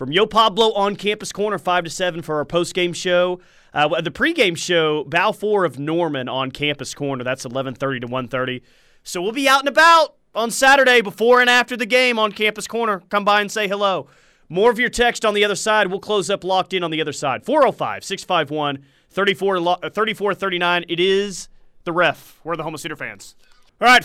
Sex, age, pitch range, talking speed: male, 30-49, 155-205 Hz, 215 wpm